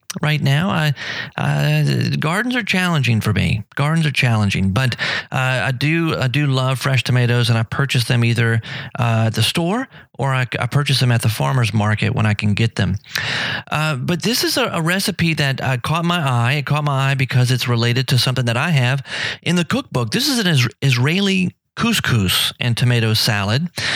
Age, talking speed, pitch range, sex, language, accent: 40-59, 200 wpm, 120-160 Hz, male, English, American